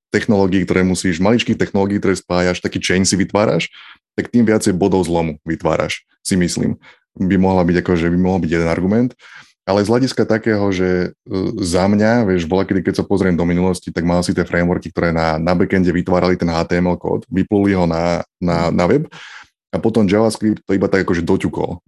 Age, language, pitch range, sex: 20-39, Slovak, 90-105 Hz, male